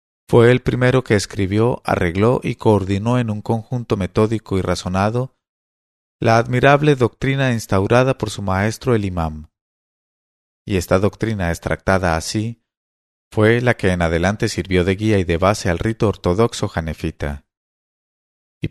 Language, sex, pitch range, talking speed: English, male, 85-115 Hz, 140 wpm